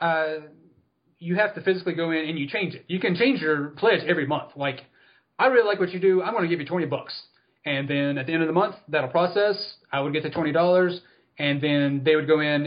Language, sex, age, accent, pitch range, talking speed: English, male, 30-49, American, 130-165 Hz, 250 wpm